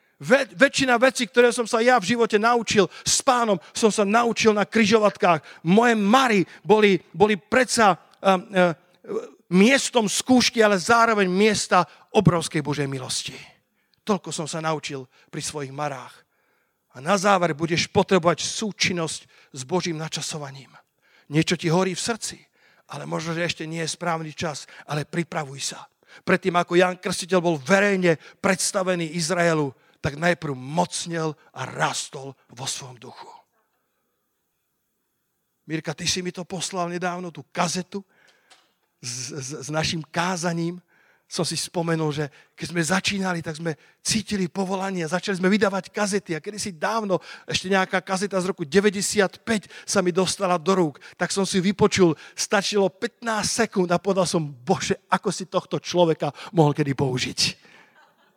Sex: male